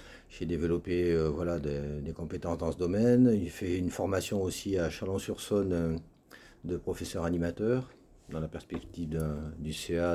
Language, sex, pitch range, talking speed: French, male, 80-115 Hz, 155 wpm